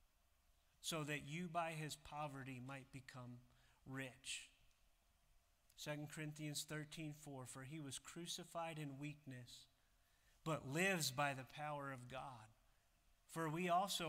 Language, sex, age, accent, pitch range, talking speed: English, male, 30-49, American, 135-165 Hz, 125 wpm